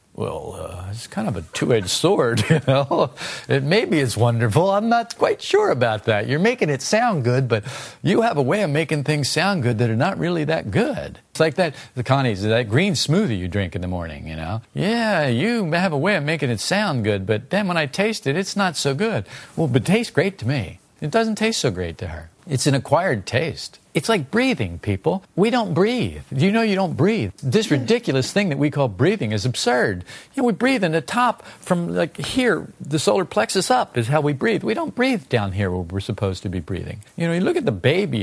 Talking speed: 235 wpm